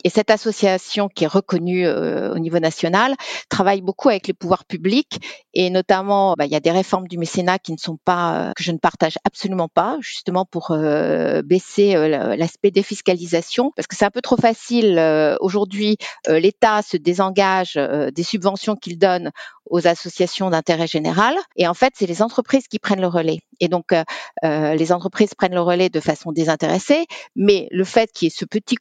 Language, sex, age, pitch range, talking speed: French, female, 50-69, 170-215 Hz, 200 wpm